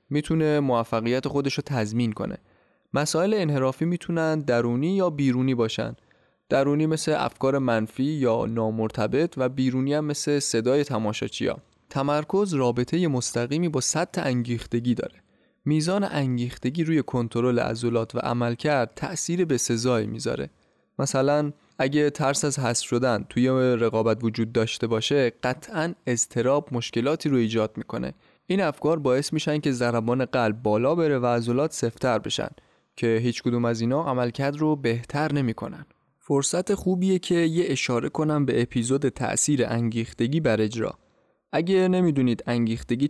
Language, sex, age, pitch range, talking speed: Persian, male, 20-39, 115-150 Hz, 135 wpm